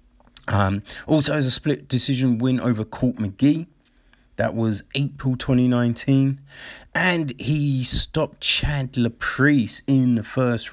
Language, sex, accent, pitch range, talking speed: English, male, British, 105-135 Hz, 125 wpm